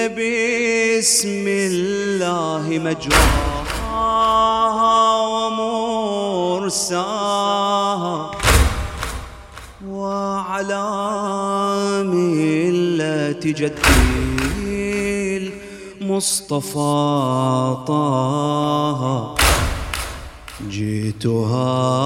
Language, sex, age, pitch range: English, male, 30-49, 110-155 Hz